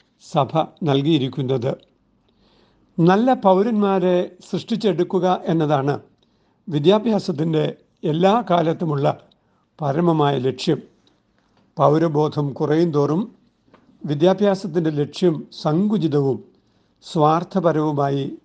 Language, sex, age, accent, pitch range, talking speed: Malayalam, male, 60-79, native, 145-190 Hz, 60 wpm